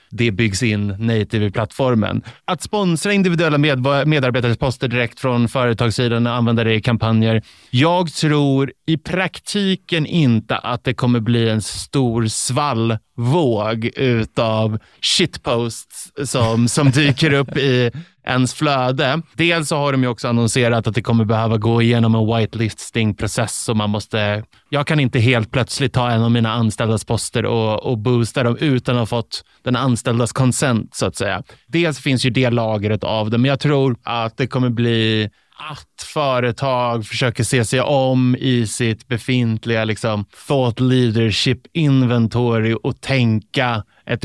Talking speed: 150 wpm